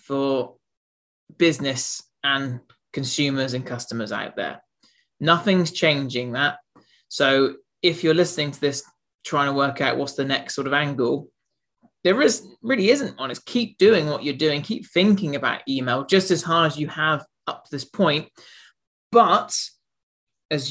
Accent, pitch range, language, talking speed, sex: British, 135-170 Hz, English, 155 wpm, male